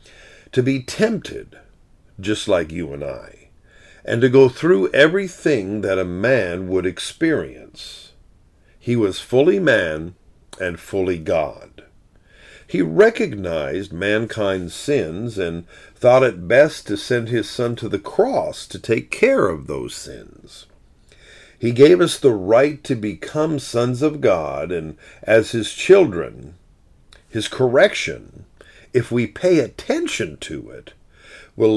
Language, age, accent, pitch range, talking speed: English, 50-69, American, 95-145 Hz, 130 wpm